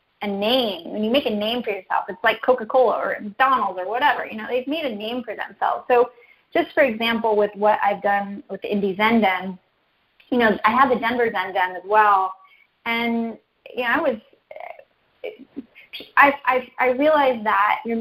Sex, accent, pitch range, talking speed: female, American, 210-265 Hz, 195 wpm